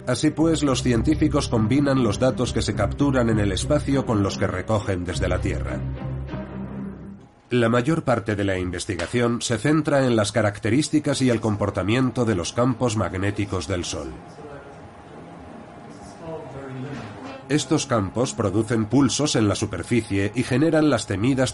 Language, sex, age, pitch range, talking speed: Spanish, male, 40-59, 95-130 Hz, 140 wpm